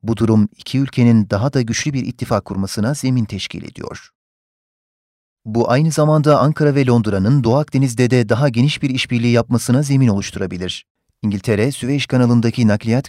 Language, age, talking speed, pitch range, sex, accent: Turkish, 40-59, 150 wpm, 105-130 Hz, male, native